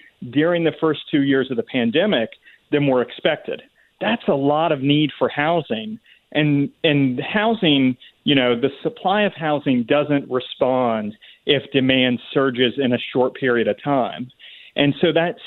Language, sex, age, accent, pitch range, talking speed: English, male, 40-59, American, 125-155 Hz, 160 wpm